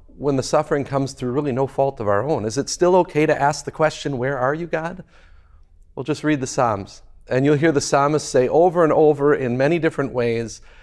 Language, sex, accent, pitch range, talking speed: English, male, American, 130-165 Hz, 225 wpm